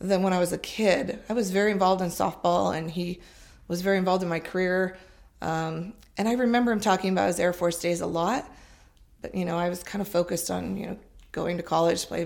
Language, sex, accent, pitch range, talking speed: English, female, American, 170-200 Hz, 235 wpm